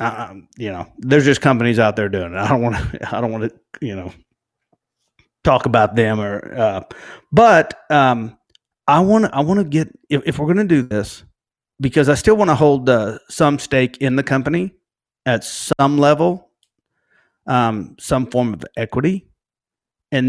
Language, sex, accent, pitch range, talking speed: English, male, American, 115-155 Hz, 185 wpm